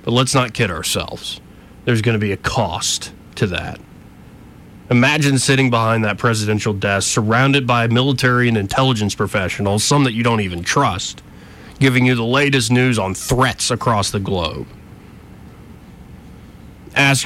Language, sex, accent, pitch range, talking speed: English, male, American, 100-125 Hz, 145 wpm